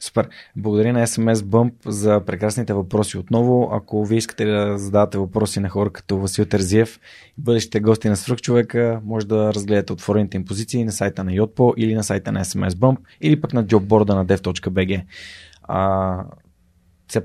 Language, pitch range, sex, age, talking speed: Bulgarian, 100-115 Hz, male, 20-39, 170 wpm